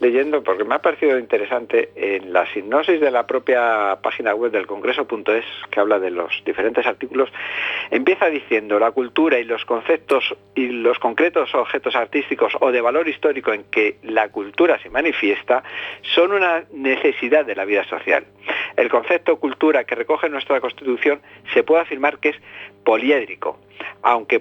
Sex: male